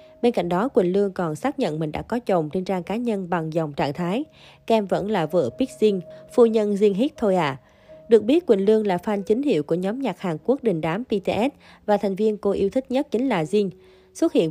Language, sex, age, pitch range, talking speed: Vietnamese, female, 20-39, 175-220 Hz, 250 wpm